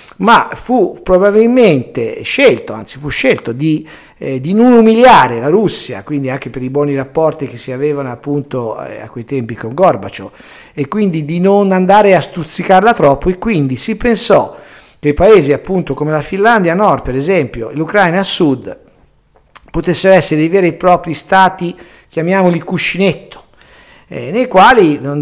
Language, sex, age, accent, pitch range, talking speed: Italian, male, 50-69, native, 130-180 Hz, 160 wpm